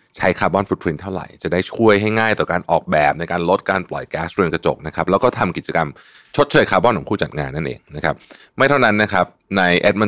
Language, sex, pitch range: Thai, male, 85-110 Hz